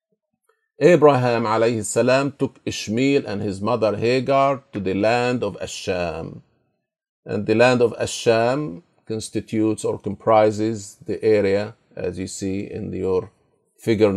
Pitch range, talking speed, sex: 100-140 Hz, 125 wpm, male